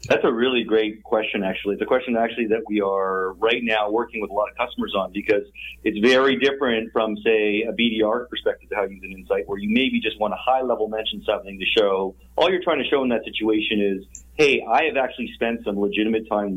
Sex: male